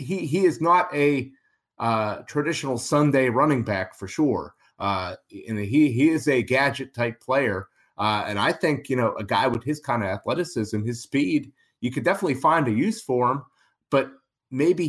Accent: American